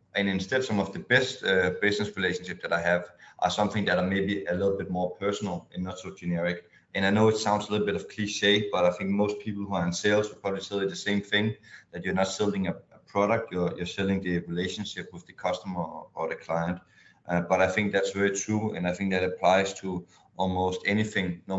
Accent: Danish